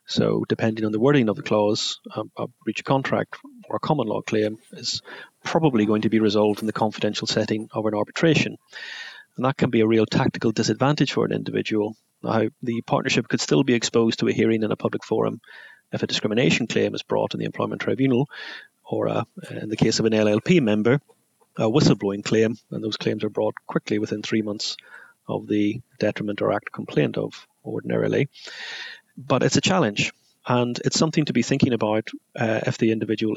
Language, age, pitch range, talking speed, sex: English, 30-49, 110-130 Hz, 195 wpm, male